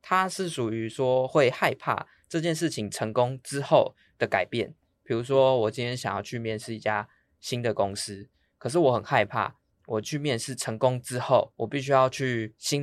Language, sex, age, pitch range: Chinese, male, 20-39, 110-150 Hz